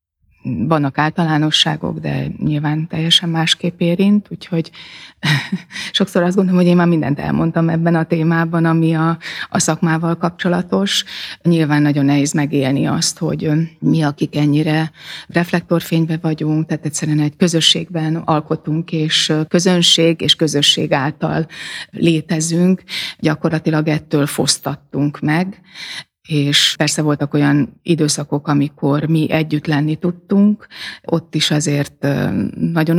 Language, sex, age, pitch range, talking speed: Hungarian, female, 30-49, 150-170 Hz, 120 wpm